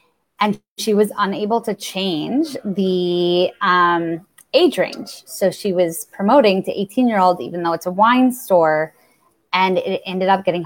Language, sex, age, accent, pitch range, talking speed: English, female, 20-39, American, 180-230 Hz, 165 wpm